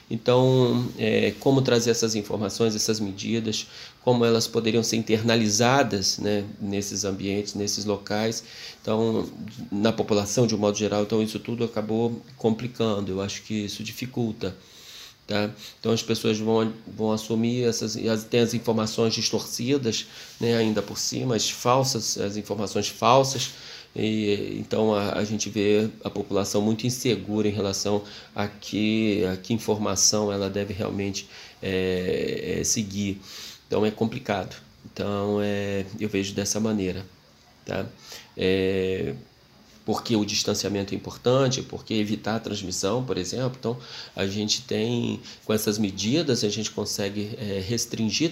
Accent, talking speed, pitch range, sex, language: Brazilian, 140 wpm, 100-120 Hz, male, Portuguese